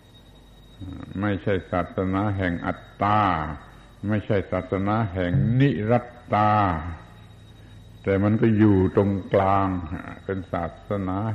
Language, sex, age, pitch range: Thai, male, 70-89, 90-120 Hz